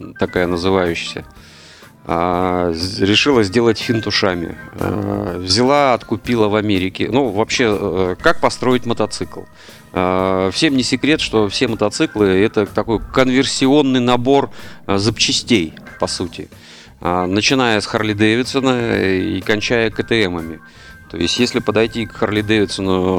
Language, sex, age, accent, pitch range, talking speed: Russian, male, 40-59, native, 95-115 Hz, 105 wpm